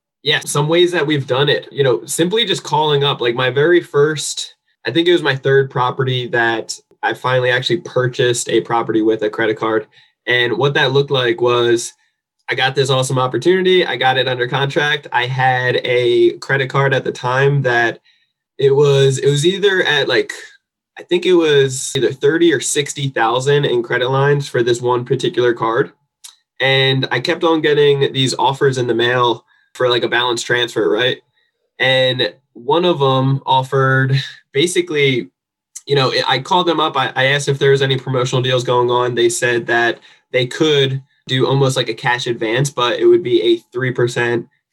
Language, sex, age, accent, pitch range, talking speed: English, male, 20-39, American, 120-150 Hz, 185 wpm